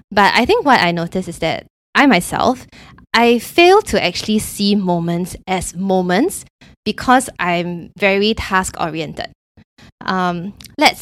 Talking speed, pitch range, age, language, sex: 125 wpm, 175-225 Hz, 20-39, English, female